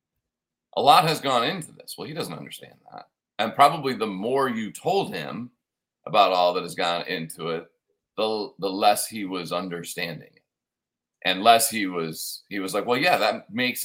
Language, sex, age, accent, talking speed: English, male, 40-59, American, 185 wpm